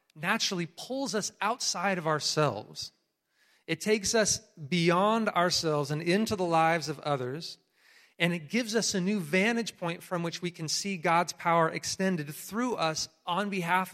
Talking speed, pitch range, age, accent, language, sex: 160 wpm, 145-185 Hz, 30-49, American, English, male